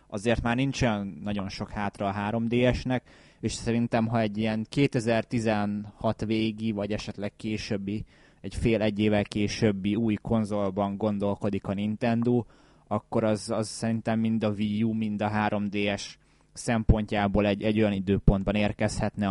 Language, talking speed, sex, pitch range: Hungarian, 140 wpm, male, 105-115 Hz